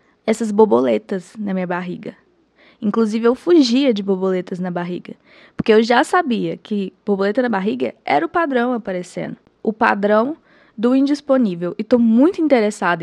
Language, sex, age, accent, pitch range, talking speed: Portuguese, female, 20-39, Brazilian, 185-255 Hz, 145 wpm